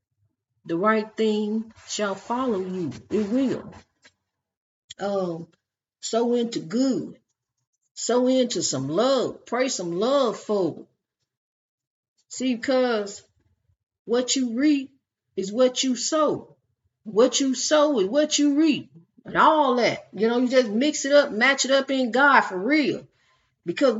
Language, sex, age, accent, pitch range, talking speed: English, female, 50-69, American, 200-290 Hz, 140 wpm